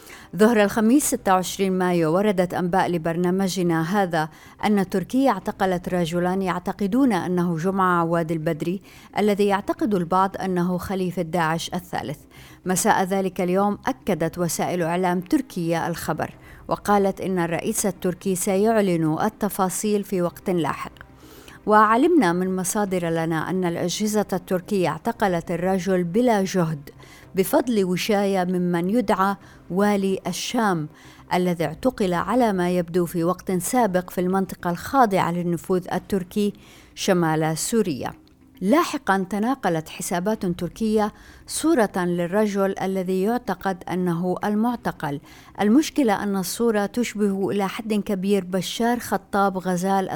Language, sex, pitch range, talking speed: Arabic, female, 175-205 Hz, 110 wpm